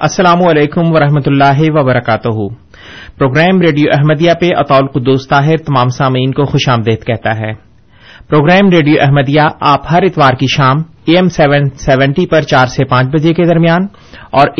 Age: 30-49